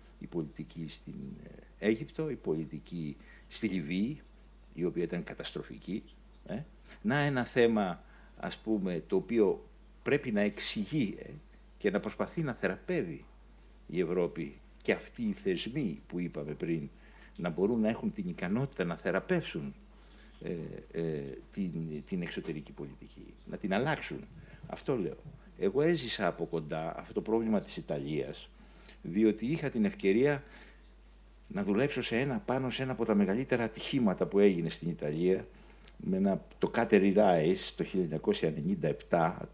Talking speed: 130 wpm